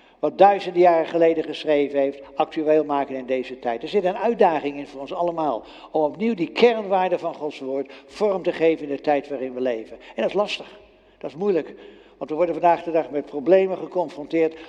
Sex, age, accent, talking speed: male, 60-79, Dutch, 210 wpm